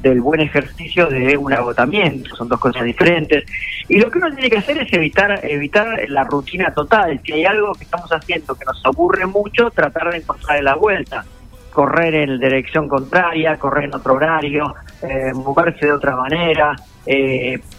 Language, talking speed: Spanish, 175 wpm